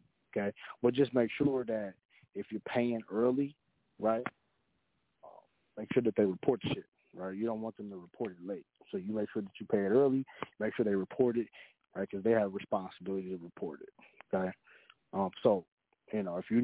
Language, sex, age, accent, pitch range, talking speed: English, male, 30-49, American, 100-115 Hz, 205 wpm